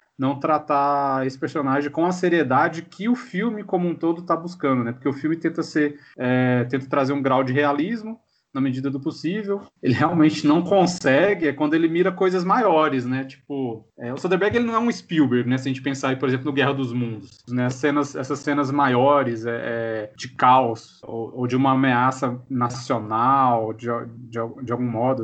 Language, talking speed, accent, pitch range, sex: Portuguese, 180 wpm, Brazilian, 130-170 Hz, male